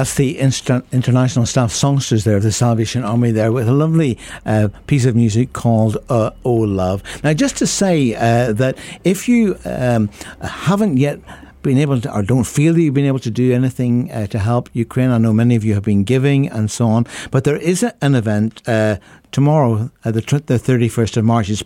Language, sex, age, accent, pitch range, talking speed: English, male, 60-79, British, 110-135 Hz, 210 wpm